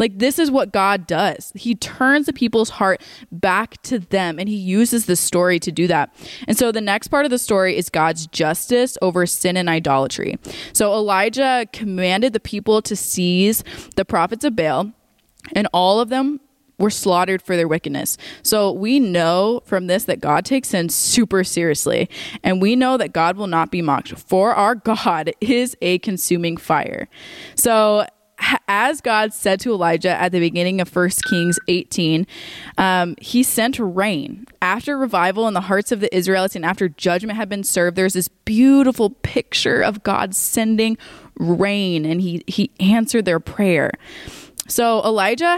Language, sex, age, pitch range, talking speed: English, female, 20-39, 180-230 Hz, 170 wpm